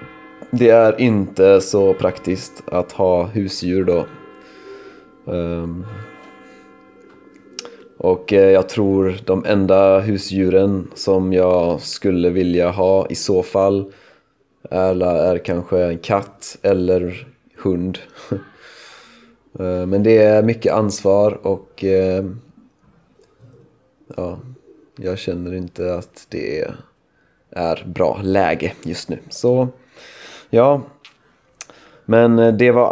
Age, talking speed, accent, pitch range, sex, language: 20-39, 95 wpm, native, 95-110 Hz, male, Swedish